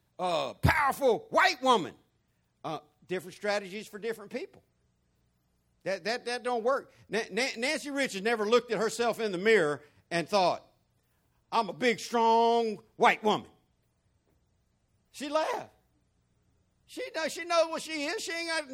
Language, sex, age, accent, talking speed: English, male, 60-79, American, 145 wpm